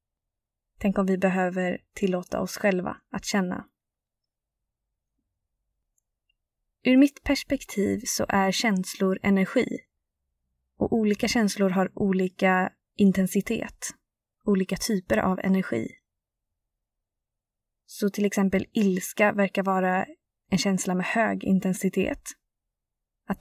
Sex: female